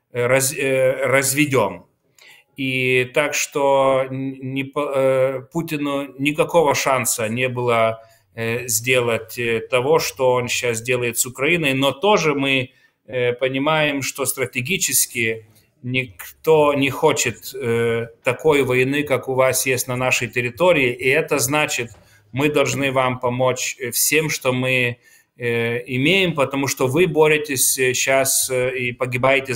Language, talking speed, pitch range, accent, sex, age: Ukrainian, 105 wpm, 120-145 Hz, native, male, 30-49